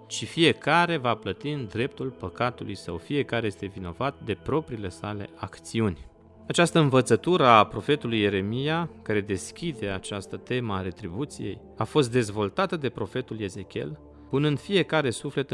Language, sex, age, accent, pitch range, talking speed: Romanian, male, 30-49, native, 105-150 Hz, 135 wpm